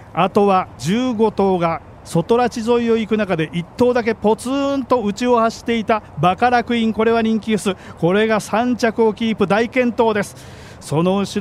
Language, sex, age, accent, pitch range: Japanese, male, 40-59, native, 175-220 Hz